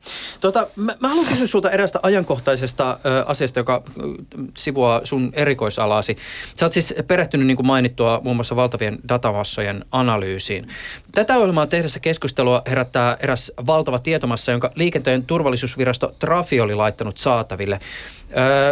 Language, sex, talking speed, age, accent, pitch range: Finnish, male, 135 wpm, 20-39, native, 120-155 Hz